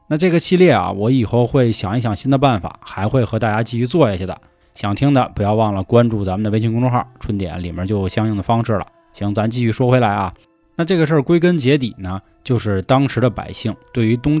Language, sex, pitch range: Chinese, male, 105-145 Hz